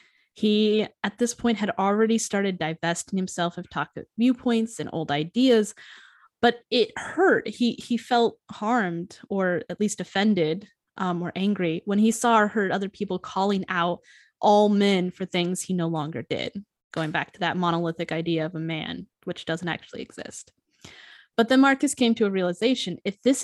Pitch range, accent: 175-230 Hz, American